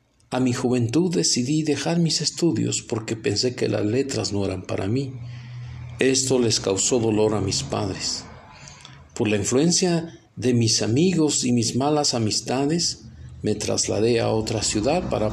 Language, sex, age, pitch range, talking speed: Spanish, male, 50-69, 110-140 Hz, 155 wpm